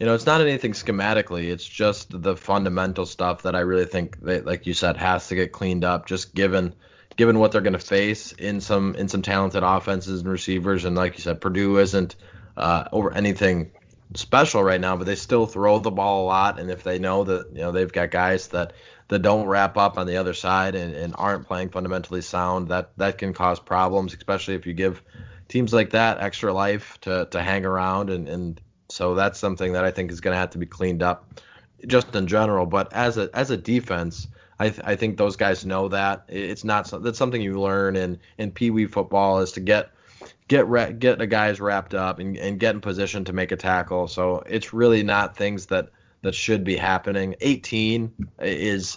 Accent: American